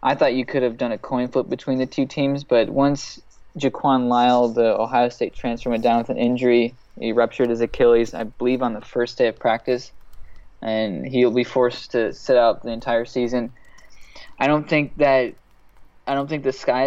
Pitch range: 120-135 Hz